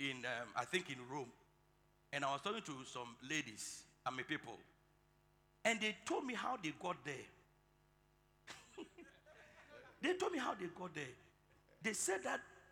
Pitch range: 165-240 Hz